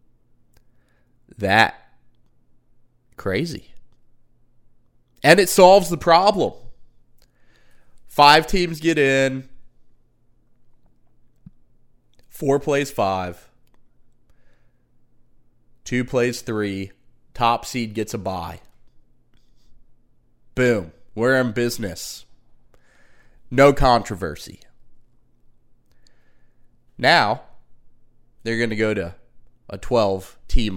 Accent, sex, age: American, male, 30-49